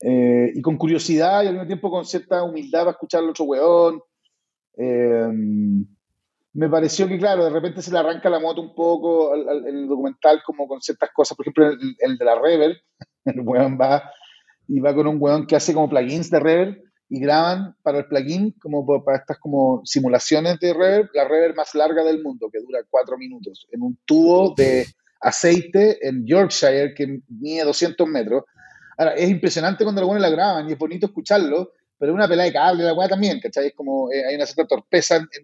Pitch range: 140-185 Hz